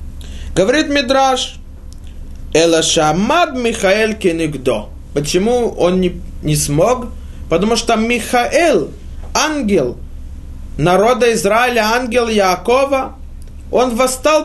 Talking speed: 85 wpm